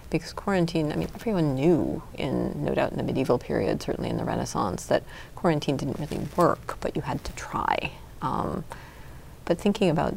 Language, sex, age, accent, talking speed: English, female, 30-49, American, 185 wpm